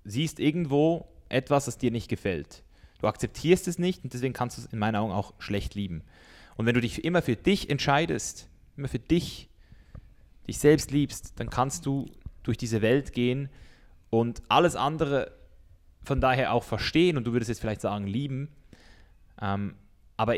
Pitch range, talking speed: 100-125 Hz, 170 wpm